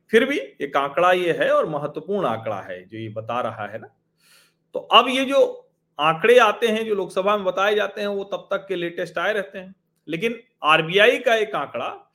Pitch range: 140-195 Hz